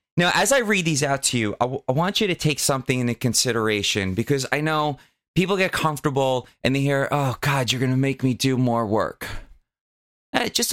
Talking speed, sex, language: 215 wpm, male, English